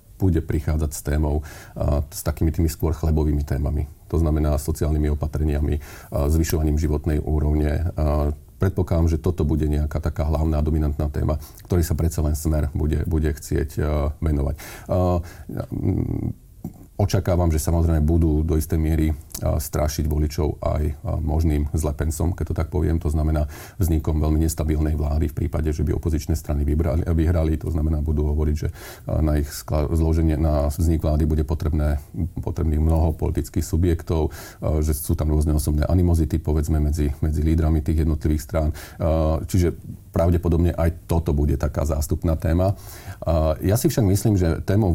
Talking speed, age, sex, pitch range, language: 145 wpm, 40-59, male, 75-85 Hz, Slovak